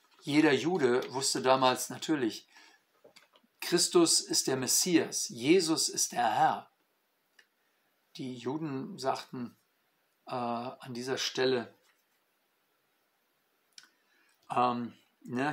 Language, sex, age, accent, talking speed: German, male, 50-69, German, 80 wpm